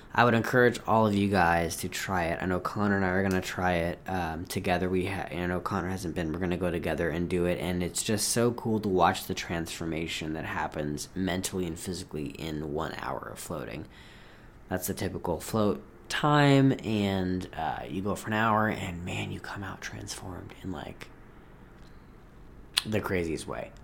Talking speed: 195 wpm